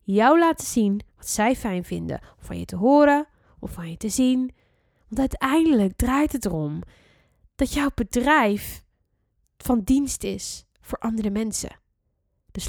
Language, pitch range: Dutch, 200-280 Hz